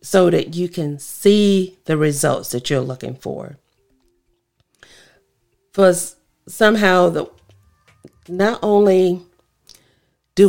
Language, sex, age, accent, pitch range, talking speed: English, female, 40-59, American, 150-190 Hz, 95 wpm